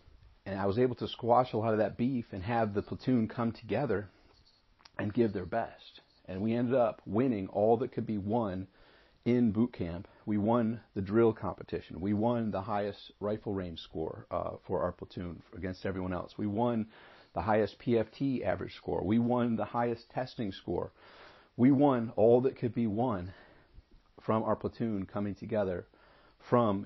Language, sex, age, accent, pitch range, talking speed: English, male, 40-59, American, 95-115 Hz, 175 wpm